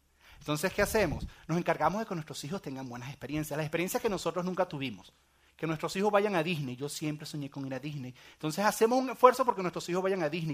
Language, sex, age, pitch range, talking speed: Spanish, male, 30-49, 140-225 Hz, 235 wpm